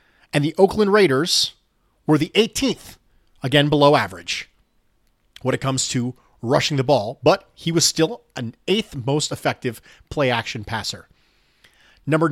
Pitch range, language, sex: 125-195 Hz, English, male